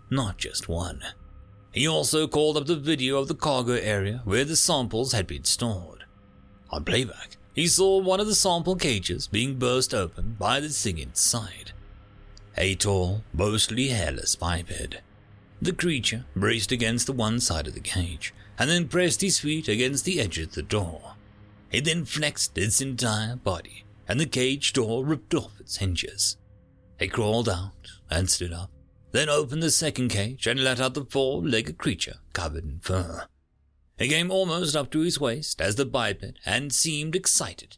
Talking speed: 170 wpm